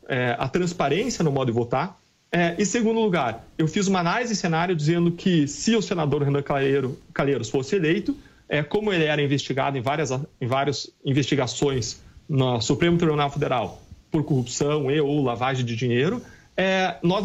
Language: English